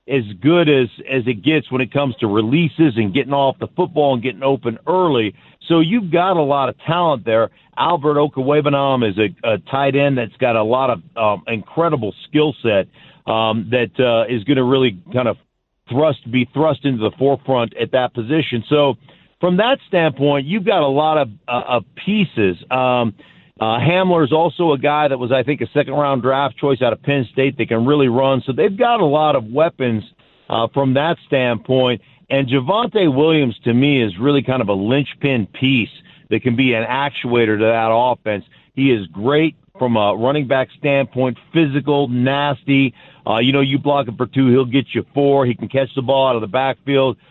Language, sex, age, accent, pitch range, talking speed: English, male, 50-69, American, 125-150 Hz, 200 wpm